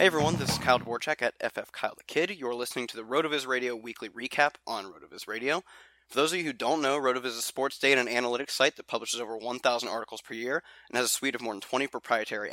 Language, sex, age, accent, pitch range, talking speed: English, male, 20-39, American, 120-140 Hz, 255 wpm